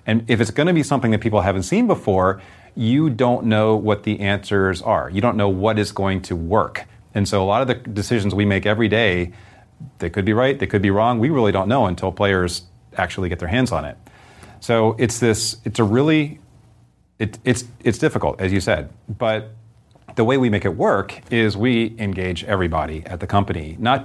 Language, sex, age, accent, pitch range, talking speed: English, male, 30-49, American, 95-120 Hz, 210 wpm